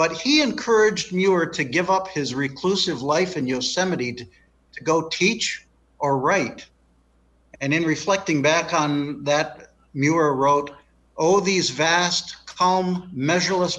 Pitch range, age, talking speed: 135-185 Hz, 60-79, 135 wpm